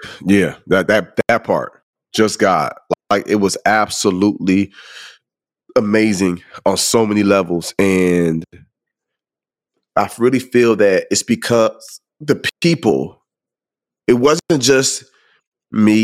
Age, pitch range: 30-49, 105-125 Hz